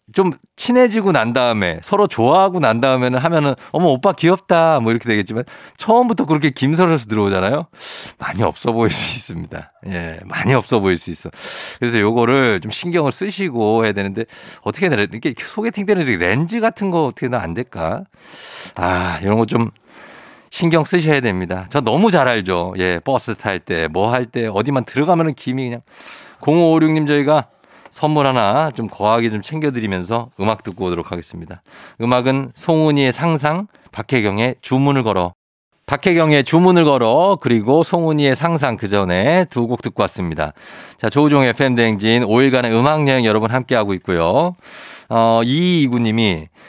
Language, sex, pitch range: Korean, male, 110-160 Hz